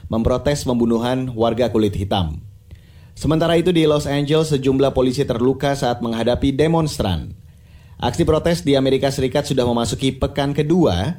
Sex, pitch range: male, 115-150 Hz